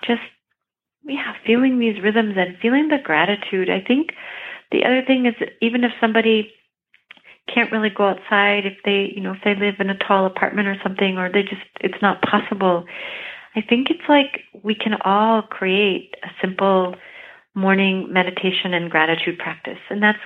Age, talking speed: 40-59, 170 wpm